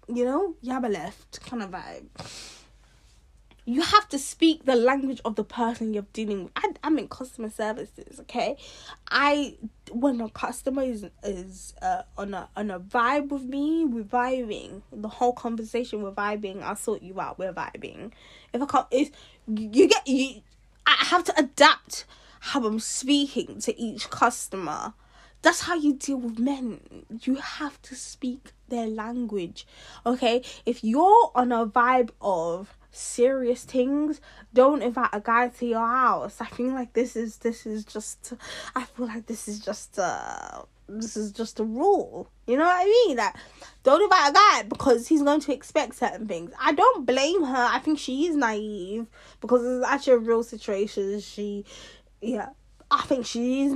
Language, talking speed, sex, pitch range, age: English, 175 wpm, female, 220-275 Hz, 10-29